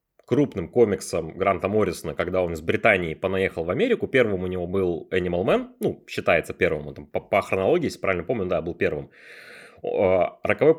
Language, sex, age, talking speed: Russian, male, 20-39, 160 wpm